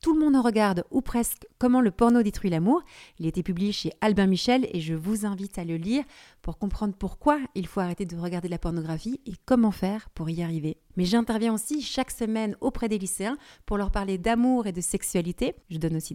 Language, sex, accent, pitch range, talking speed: French, female, French, 180-230 Hz, 225 wpm